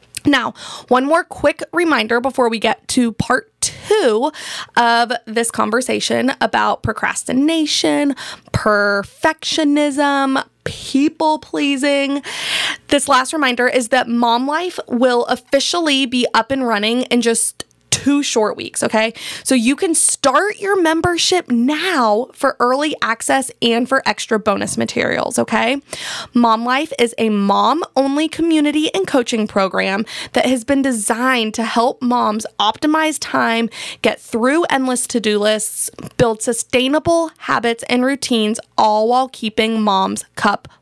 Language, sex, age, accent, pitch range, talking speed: English, female, 20-39, American, 225-280 Hz, 125 wpm